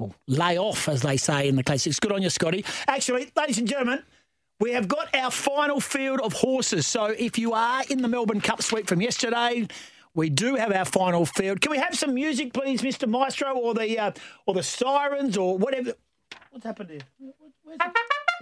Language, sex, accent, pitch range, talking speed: English, male, Australian, 180-250 Hz, 200 wpm